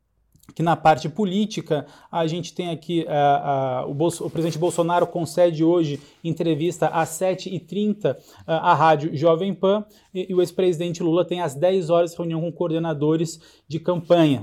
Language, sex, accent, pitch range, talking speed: Portuguese, male, Brazilian, 155-175 Hz, 160 wpm